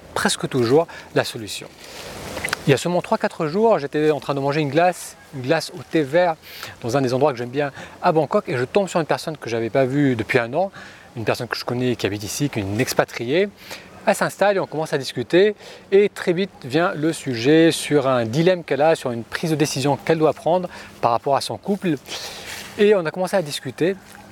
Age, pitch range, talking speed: 30-49, 130-175 Hz, 230 wpm